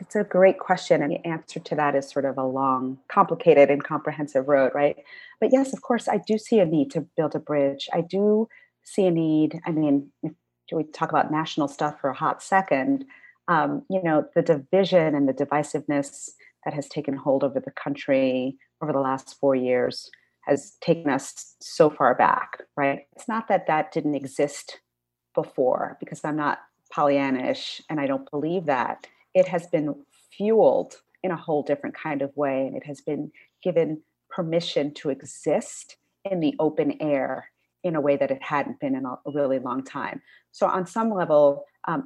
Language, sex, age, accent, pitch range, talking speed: English, female, 40-59, American, 140-185 Hz, 185 wpm